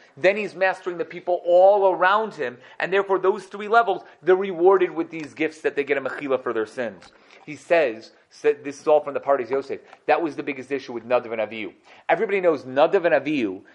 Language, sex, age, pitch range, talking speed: English, male, 30-49, 140-225 Hz, 220 wpm